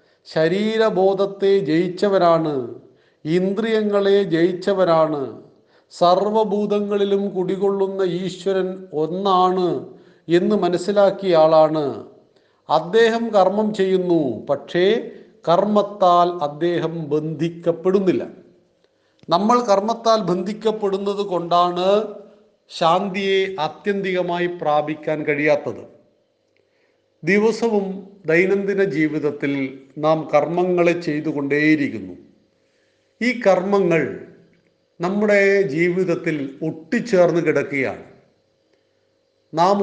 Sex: male